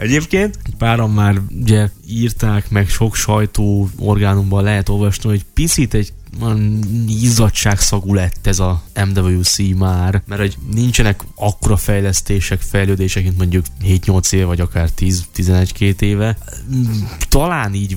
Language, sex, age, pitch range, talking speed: Hungarian, male, 10-29, 90-105 Hz, 135 wpm